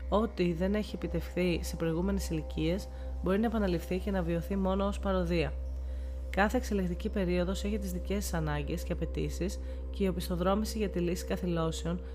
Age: 30-49